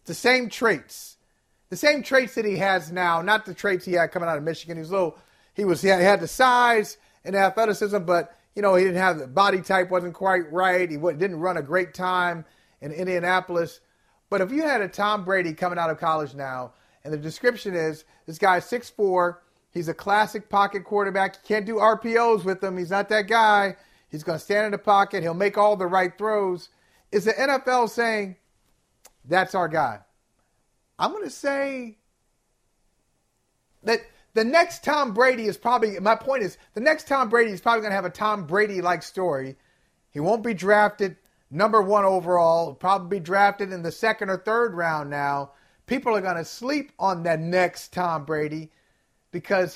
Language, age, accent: English, 40-59, American